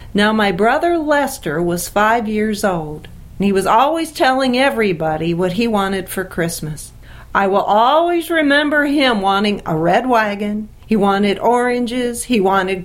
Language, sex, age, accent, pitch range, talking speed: English, female, 50-69, American, 175-230 Hz, 155 wpm